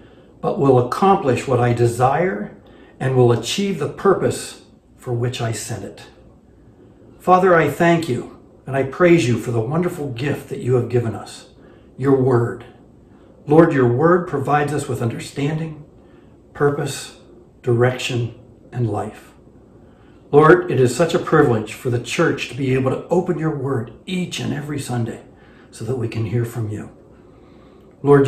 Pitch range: 120-145 Hz